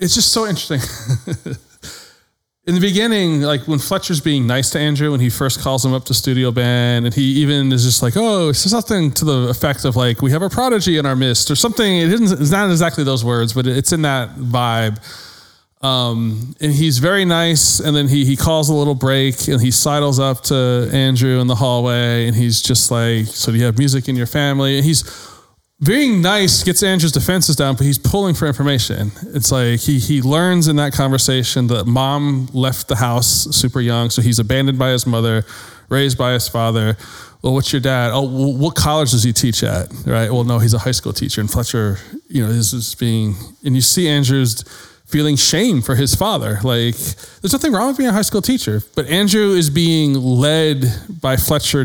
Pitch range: 120-150 Hz